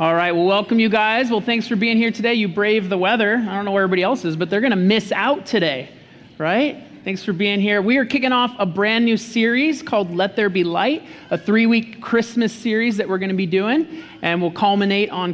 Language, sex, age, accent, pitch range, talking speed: English, male, 30-49, American, 185-245 Hz, 245 wpm